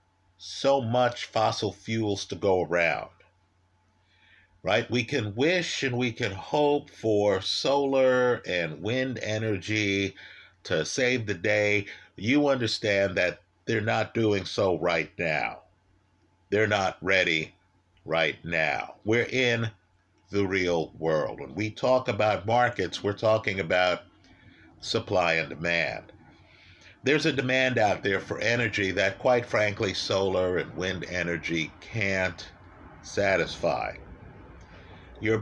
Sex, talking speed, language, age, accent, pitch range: male, 120 wpm, English, 50-69, American, 95-115 Hz